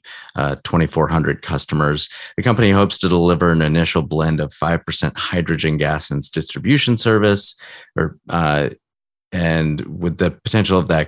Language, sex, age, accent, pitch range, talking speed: English, male, 30-49, American, 80-95 Hz, 140 wpm